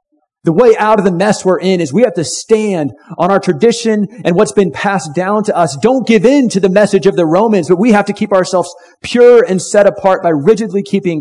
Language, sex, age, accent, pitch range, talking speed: English, male, 40-59, American, 160-215 Hz, 240 wpm